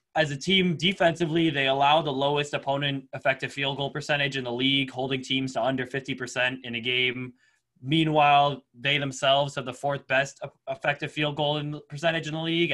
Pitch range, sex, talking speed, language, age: 135-160 Hz, male, 190 wpm, English, 10-29